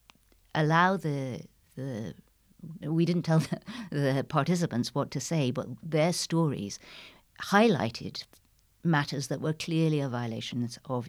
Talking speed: 125 wpm